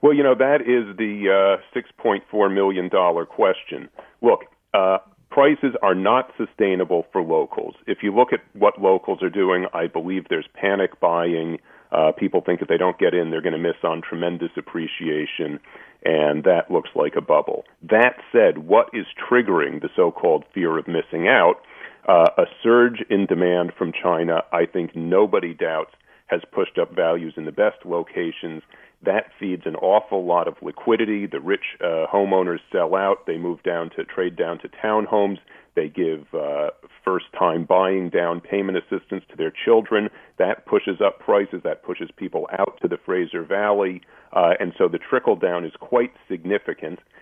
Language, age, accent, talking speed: English, 40-59, American, 175 wpm